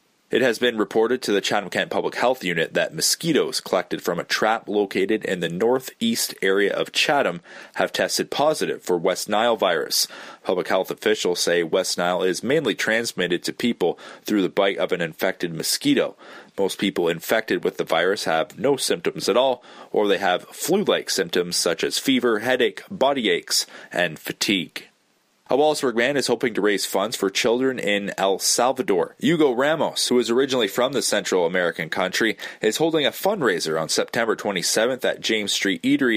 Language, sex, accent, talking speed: English, male, American, 175 wpm